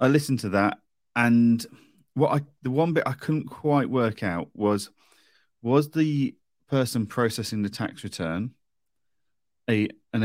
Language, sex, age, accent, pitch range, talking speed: English, male, 30-49, British, 100-130 Hz, 145 wpm